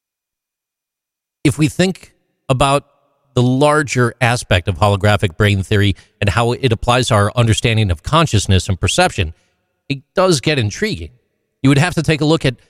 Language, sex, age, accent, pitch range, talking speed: English, male, 40-59, American, 100-145 Hz, 155 wpm